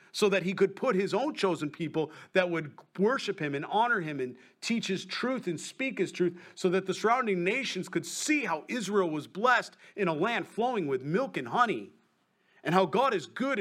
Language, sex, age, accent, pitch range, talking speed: English, male, 40-59, American, 155-195 Hz, 210 wpm